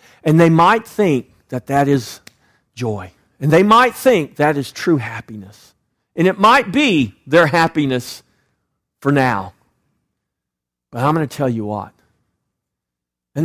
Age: 50-69